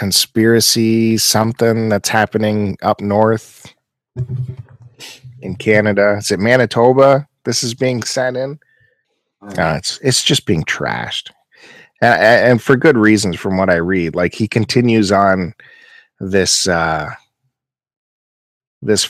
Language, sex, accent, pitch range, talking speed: English, male, American, 95-125 Hz, 120 wpm